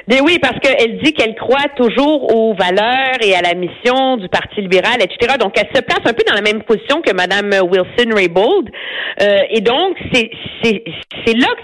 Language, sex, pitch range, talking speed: French, female, 195-255 Hz, 180 wpm